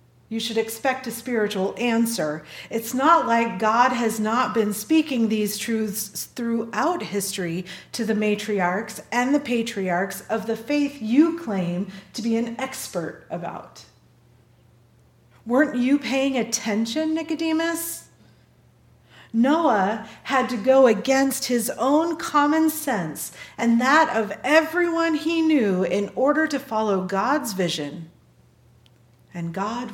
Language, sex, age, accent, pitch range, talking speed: English, female, 40-59, American, 185-270 Hz, 125 wpm